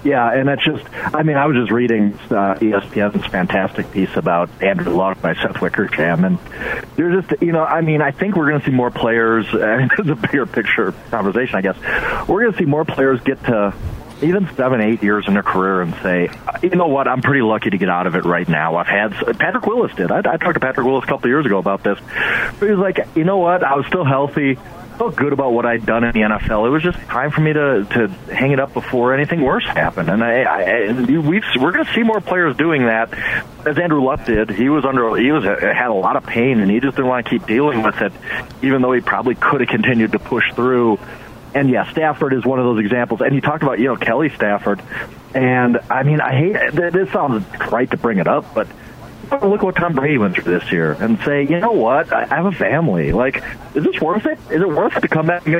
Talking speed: 255 wpm